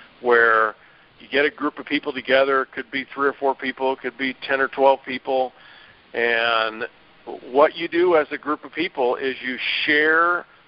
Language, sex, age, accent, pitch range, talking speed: English, male, 50-69, American, 130-155 Hz, 190 wpm